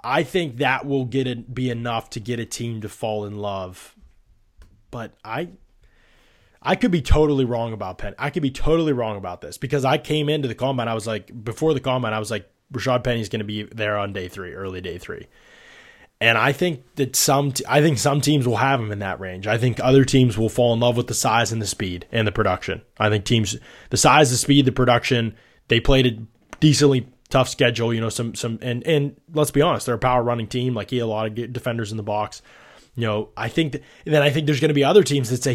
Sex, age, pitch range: male, 20-39, 110-140 Hz